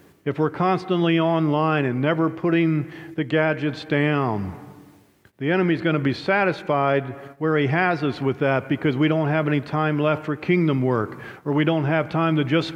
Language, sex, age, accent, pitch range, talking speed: English, male, 50-69, American, 130-160 Hz, 185 wpm